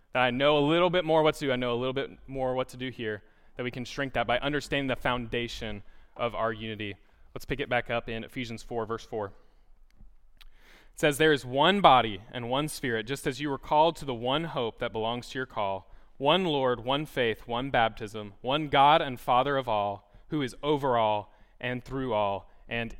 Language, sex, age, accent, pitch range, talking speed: English, male, 20-39, American, 110-150 Hz, 220 wpm